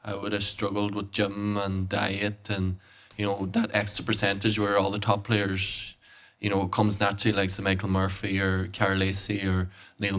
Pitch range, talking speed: 95-105 Hz, 185 wpm